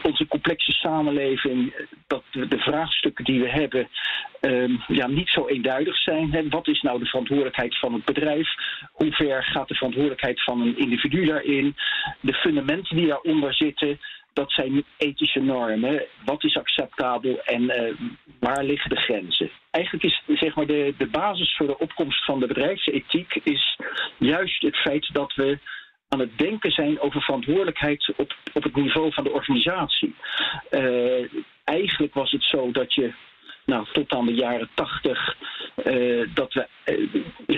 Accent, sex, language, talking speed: Dutch, male, Dutch, 145 wpm